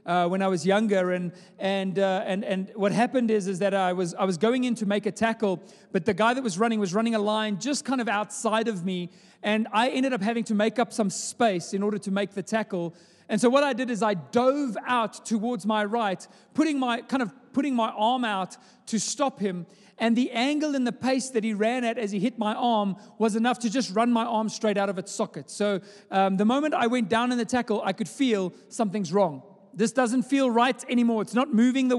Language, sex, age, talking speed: English, male, 30-49, 245 wpm